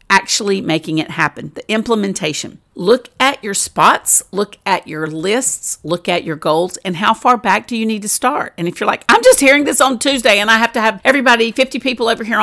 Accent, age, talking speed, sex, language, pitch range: American, 50-69, 225 wpm, female, English, 165-225 Hz